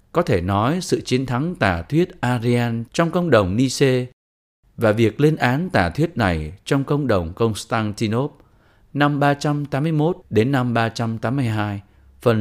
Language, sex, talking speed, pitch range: Vietnamese, male, 145 wpm, 100-140 Hz